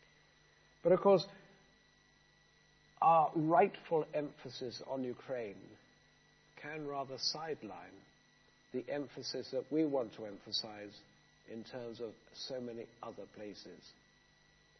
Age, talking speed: 60-79, 100 wpm